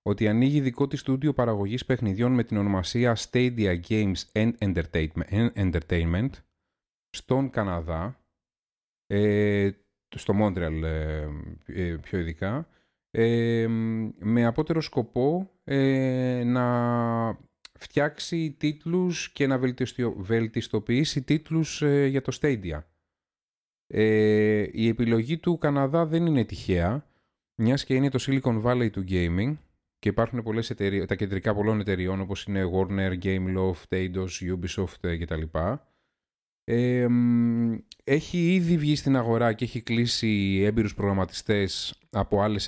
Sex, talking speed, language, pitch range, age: male, 105 wpm, Greek, 95-140 Hz, 30-49